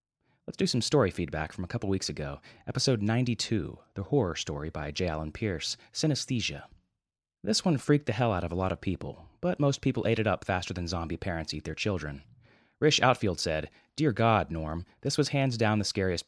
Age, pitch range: 30-49, 85-120 Hz